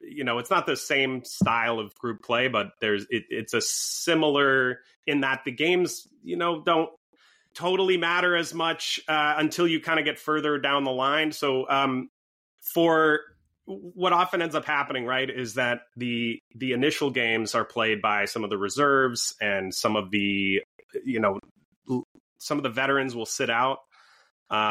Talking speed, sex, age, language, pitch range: 175 wpm, male, 30-49, English, 120-155 Hz